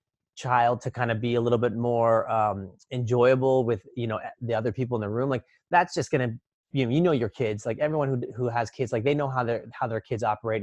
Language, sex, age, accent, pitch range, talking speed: English, male, 30-49, American, 115-135 Hz, 255 wpm